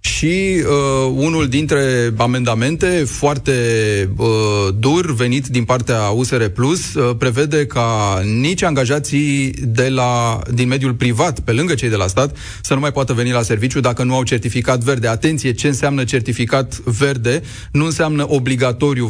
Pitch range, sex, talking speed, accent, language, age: 120-145 Hz, male, 155 wpm, native, Romanian, 30-49